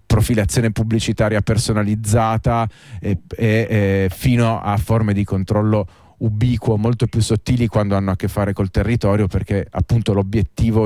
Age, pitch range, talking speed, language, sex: 30-49, 100-120 Hz, 140 wpm, Italian, male